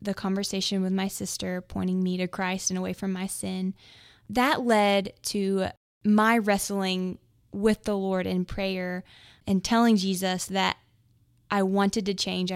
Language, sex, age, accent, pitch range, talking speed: English, female, 20-39, American, 185-200 Hz, 155 wpm